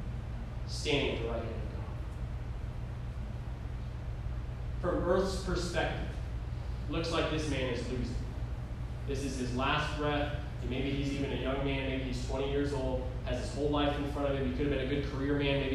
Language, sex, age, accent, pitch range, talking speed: English, male, 20-39, American, 125-150 Hz, 190 wpm